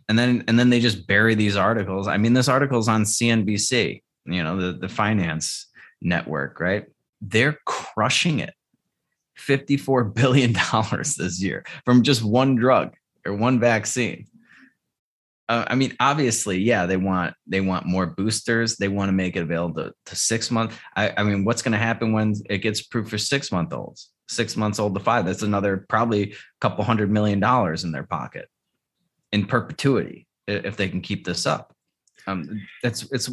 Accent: American